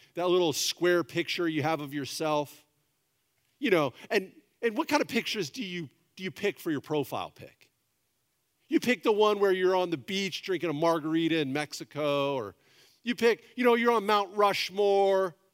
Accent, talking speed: American, 180 wpm